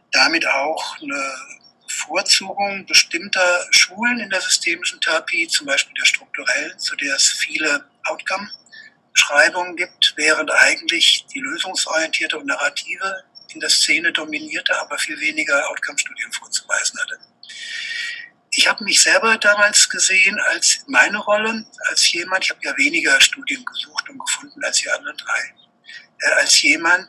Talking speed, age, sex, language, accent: 135 wpm, 60-79, male, German, German